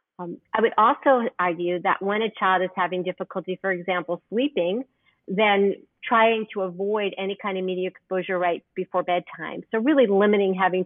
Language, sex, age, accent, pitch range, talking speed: English, female, 40-59, American, 180-210 Hz, 170 wpm